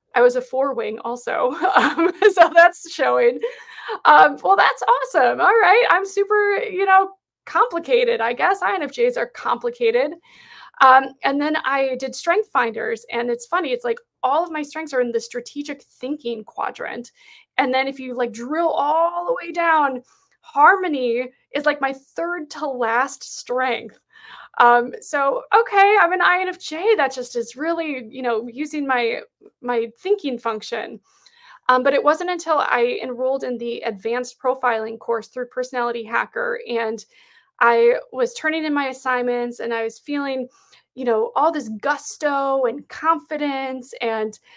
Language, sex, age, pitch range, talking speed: English, female, 20-39, 245-375 Hz, 155 wpm